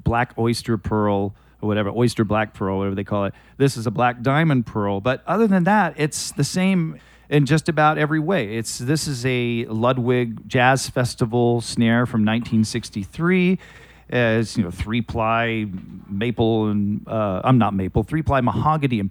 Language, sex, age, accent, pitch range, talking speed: English, male, 40-59, American, 110-145 Hz, 175 wpm